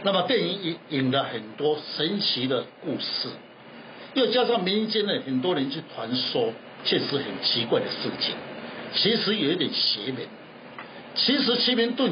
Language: Chinese